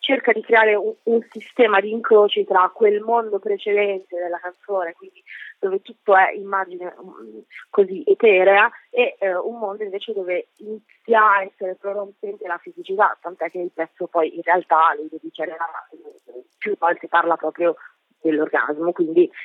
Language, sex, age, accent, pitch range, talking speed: Italian, female, 20-39, native, 195-245 Hz, 145 wpm